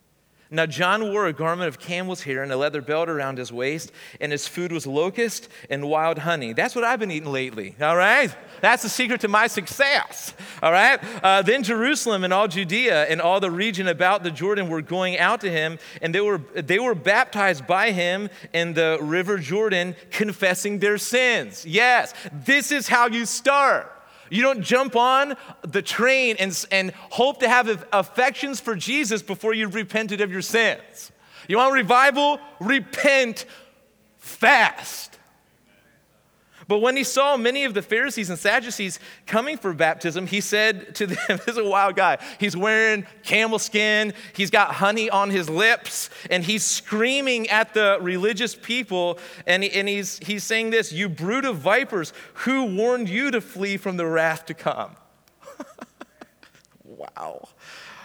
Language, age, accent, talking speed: English, 40-59, American, 165 wpm